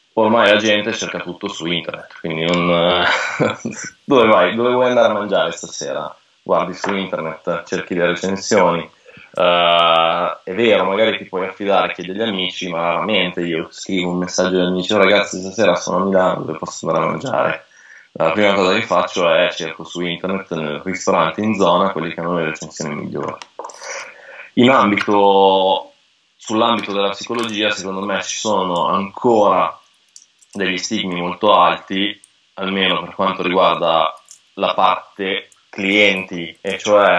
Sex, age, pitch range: male, 20-39, 90-100 Hz